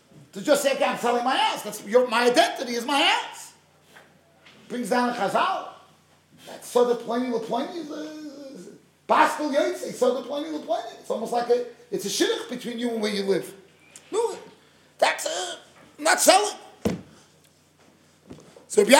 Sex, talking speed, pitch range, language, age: male, 150 wpm, 245-335 Hz, English, 30-49